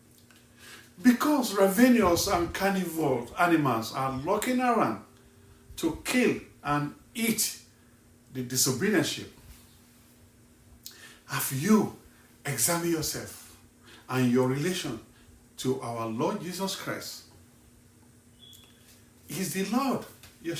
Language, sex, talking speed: English, male, 90 wpm